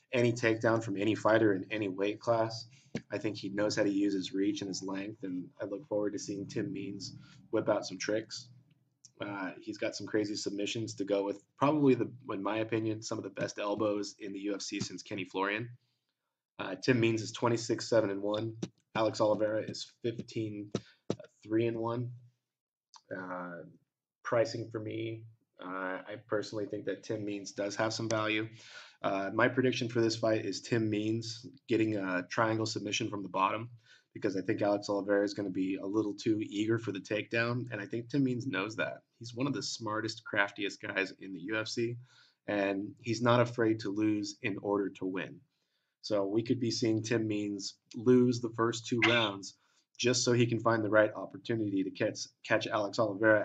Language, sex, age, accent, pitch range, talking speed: English, male, 20-39, American, 100-115 Hz, 190 wpm